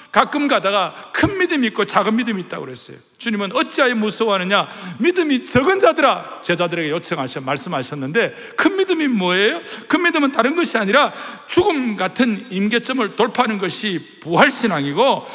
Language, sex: Korean, male